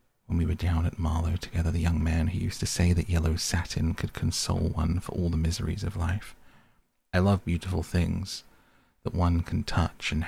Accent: British